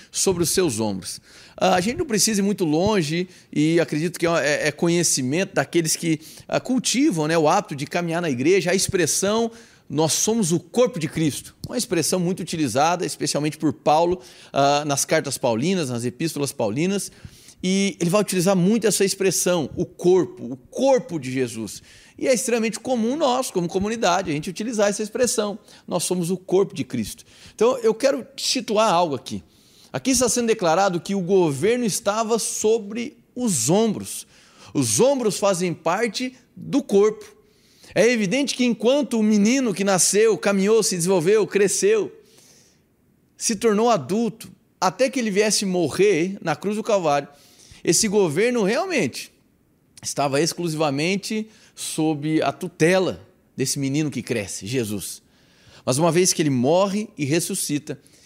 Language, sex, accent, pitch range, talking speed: Portuguese, male, Brazilian, 160-220 Hz, 150 wpm